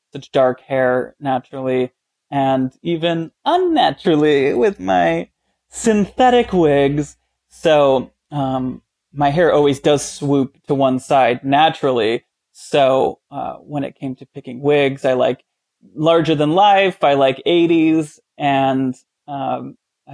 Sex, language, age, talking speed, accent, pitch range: male, English, 20-39, 115 wpm, American, 135-160 Hz